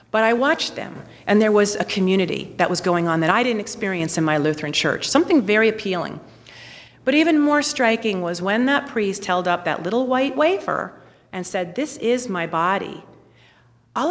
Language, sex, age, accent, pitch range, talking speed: English, female, 40-59, American, 170-235 Hz, 190 wpm